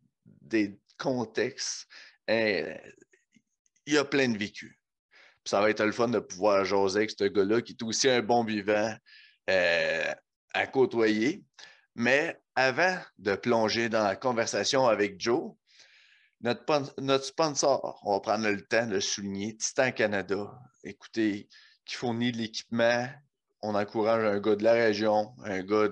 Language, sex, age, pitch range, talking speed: French, male, 30-49, 105-130 Hz, 145 wpm